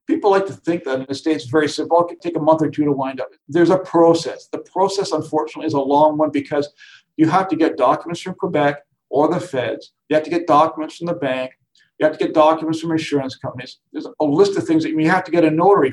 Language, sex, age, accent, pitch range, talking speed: English, male, 50-69, American, 140-170 Hz, 265 wpm